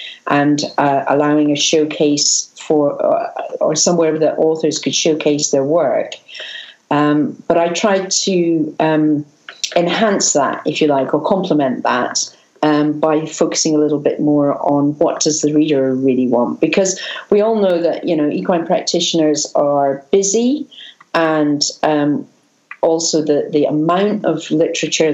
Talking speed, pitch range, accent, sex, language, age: 150 wpm, 150-175 Hz, British, female, English, 50-69